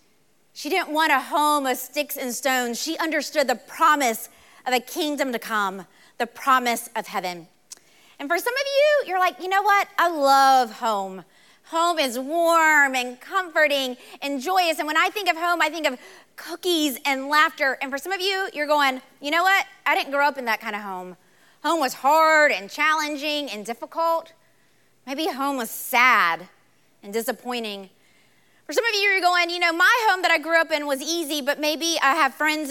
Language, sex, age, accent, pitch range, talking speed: English, female, 30-49, American, 240-315 Hz, 200 wpm